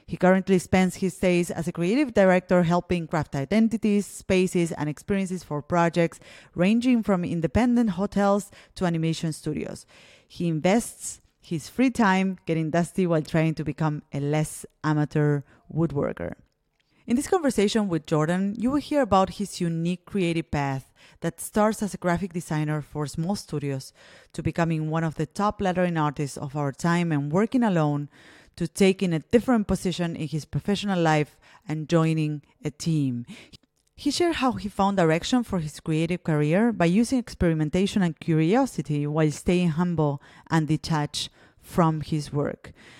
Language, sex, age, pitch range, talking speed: English, female, 30-49, 155-190 Hz, 155 wpm